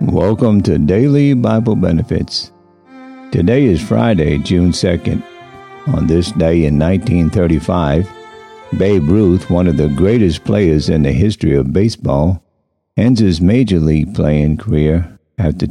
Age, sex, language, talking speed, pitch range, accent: 50-69, male, English, 130 wpm, 75-100 Hz, American